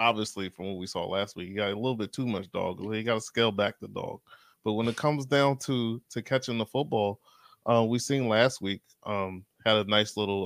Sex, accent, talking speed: male, American, 240 wpm